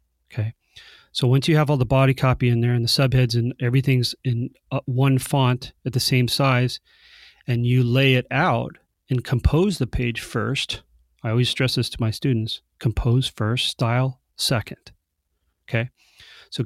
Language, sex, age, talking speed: English, male, 30-49, 165 wpm